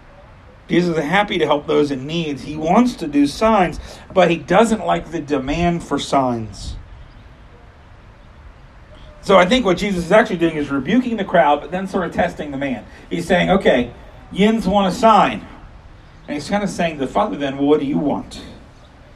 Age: 40-59